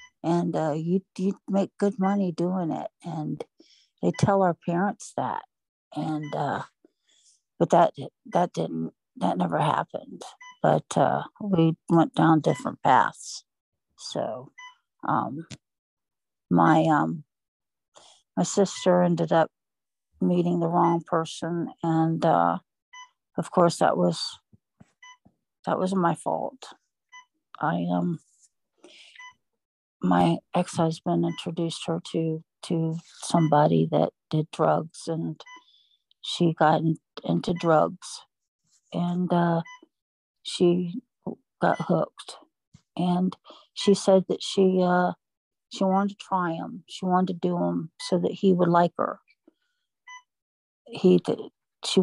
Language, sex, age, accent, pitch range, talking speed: English, female, 60-79, American, 165-200 Hz, 115 wpm